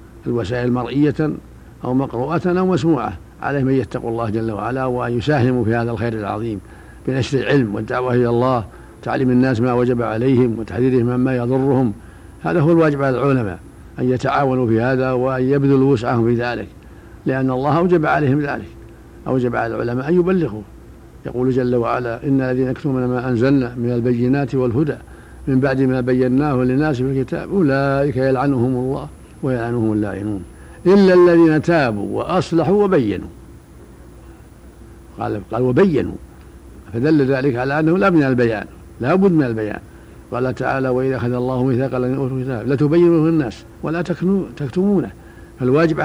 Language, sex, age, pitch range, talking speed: Arabic, male, 60-79, 120-145 Hz, 140 wpm